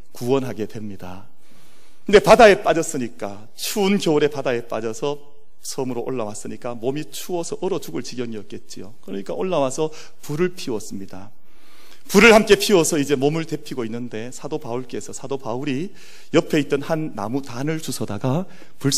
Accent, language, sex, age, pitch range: native, Korean, male, 40-59, 120-175 Hz